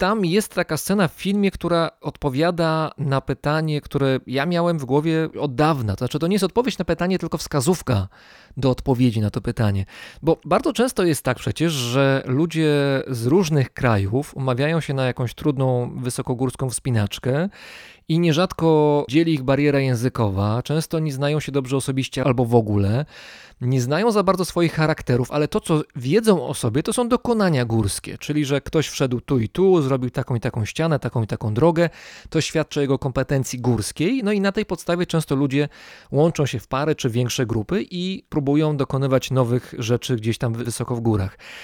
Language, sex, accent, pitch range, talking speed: Polish, male, native, 130-165 Hz, 180 wpm